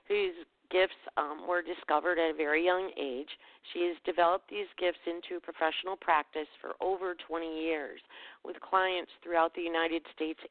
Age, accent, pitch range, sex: 40-59, American, 165-195 Hz, female